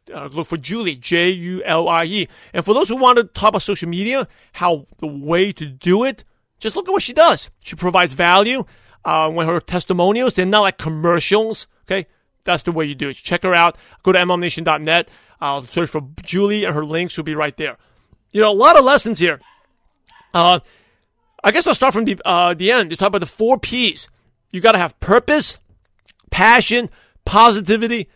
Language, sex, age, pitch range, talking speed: English, male, 40-59, 170-230 Hz, 205 wpm